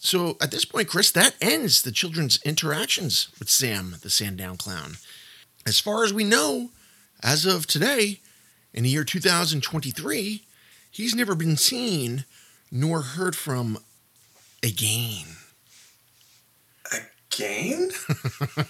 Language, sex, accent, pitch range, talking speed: English, male, American, 110-175 Hz, 115 wpm